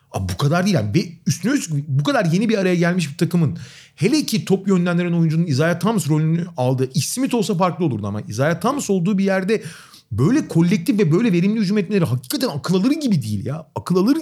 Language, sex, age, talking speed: Turkish, male, 40-59, 210 wpm